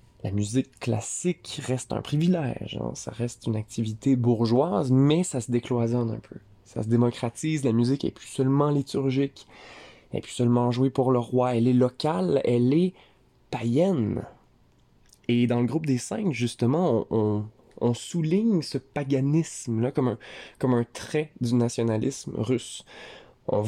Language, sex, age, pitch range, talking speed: French, male, 20-39, 115-145 Hz, 160 wpm